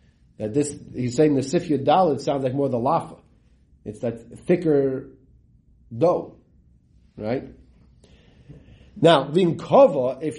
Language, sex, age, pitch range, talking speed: English, male, 40-59, 115-150 Hz, 120 wpm